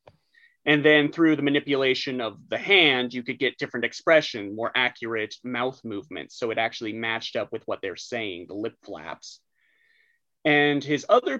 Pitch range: 120-150 Hz